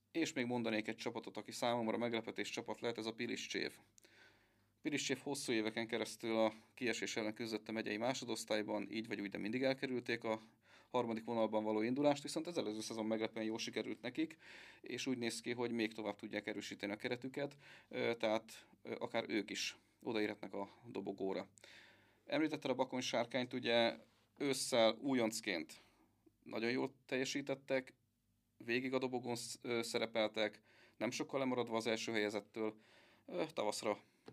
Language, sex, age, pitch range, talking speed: Hungarian, male, 30-49, 110-125 Hz, 140 wpm